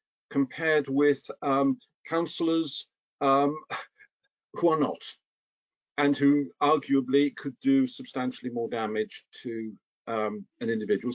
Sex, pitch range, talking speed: male, 125-160 Hz, 110 wpm